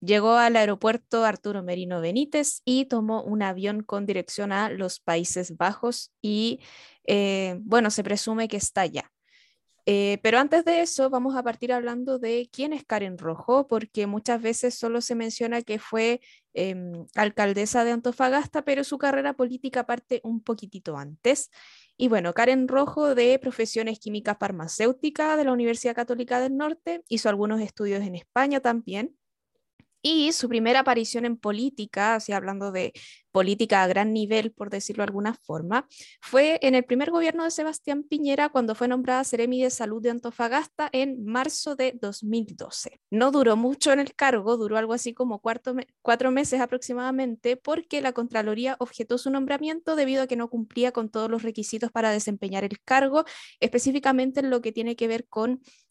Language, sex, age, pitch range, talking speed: Spanish, female, 10-29, 215-265 Hz, 165 wpm